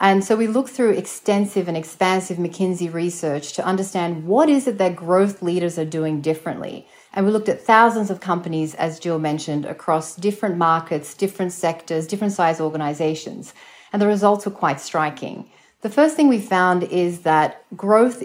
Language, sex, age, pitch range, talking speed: English, female, 30-49, 160-205 Hz, 175 wpm